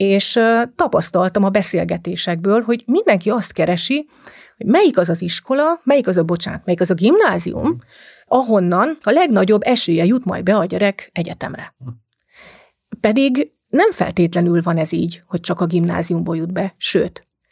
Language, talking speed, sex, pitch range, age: Hungarian, 150 wpm, female, 175-220 Hz, 30-49